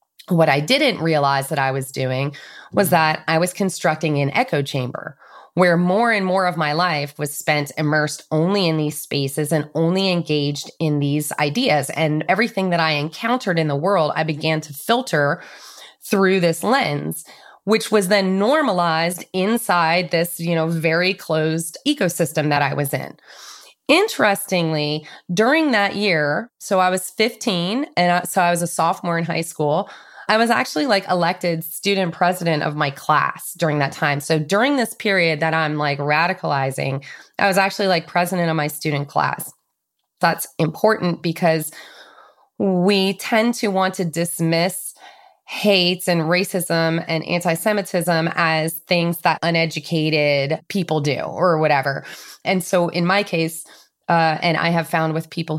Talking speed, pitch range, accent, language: 160 wpm, 155-190 Hz, American, English